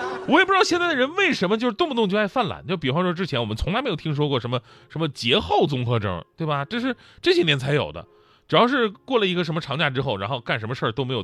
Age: 30-49